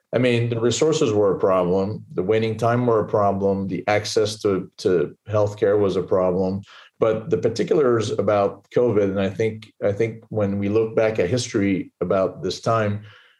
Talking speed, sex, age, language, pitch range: 180 wpm, male, 40-59, English, 100-120 Hz